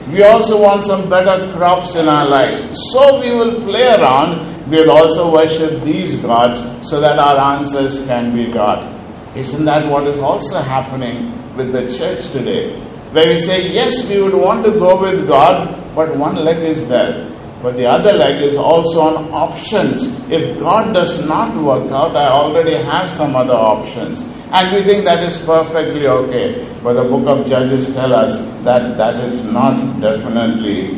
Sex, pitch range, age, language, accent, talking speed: male, 130-185 Hz, 50-69, English, Indian, 180 wpm